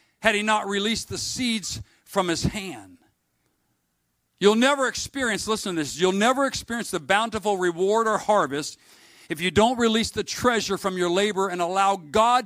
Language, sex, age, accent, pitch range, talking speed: English, male, 50-69, American, 165-215 Hz, 170 wpm